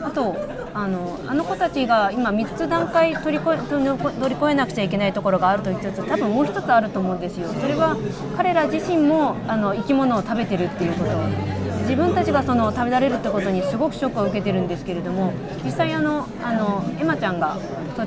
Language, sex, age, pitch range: Japanese, female, 30-49, 190-270 Hz